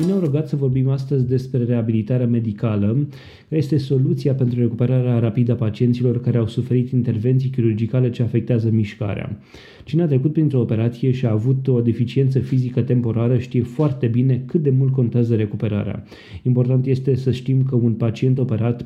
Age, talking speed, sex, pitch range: 20-39, 165 wpm, male, 120-140 Hz